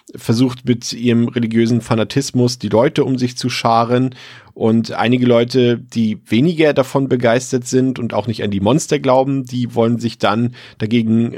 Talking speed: 165 wpm